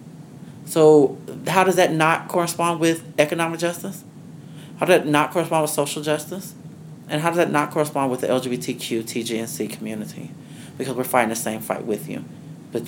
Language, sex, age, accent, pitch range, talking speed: English, male, 30-49, American, 110-150 Hz, 170 wpm